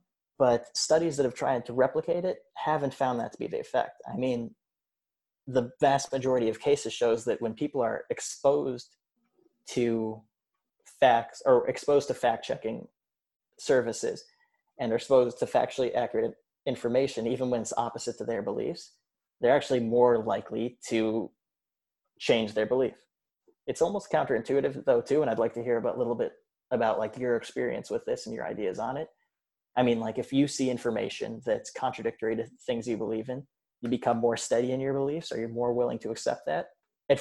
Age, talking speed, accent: 20-39, 180 wpm, American